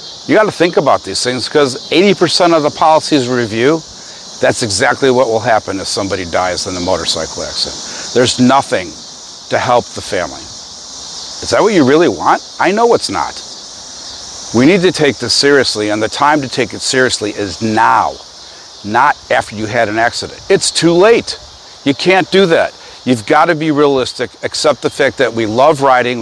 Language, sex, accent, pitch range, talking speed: English, male, American, 115-145 Hz, 185 wpm